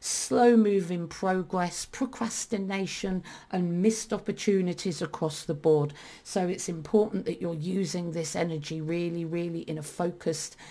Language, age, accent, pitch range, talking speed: English, 40-59, British, 170-225 Hz, 125 wpm